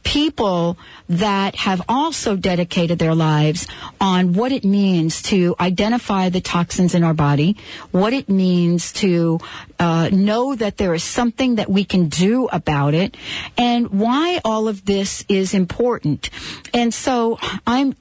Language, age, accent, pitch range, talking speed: English, 50-69, American, 180-235 Hz, 145 wpm